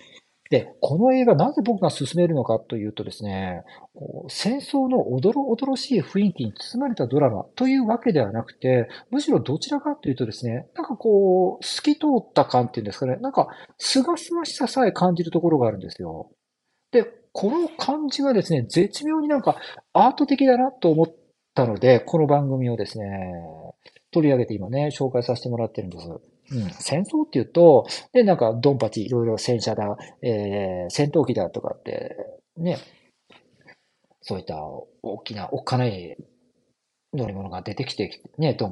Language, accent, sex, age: Japanese, native, male, 40-59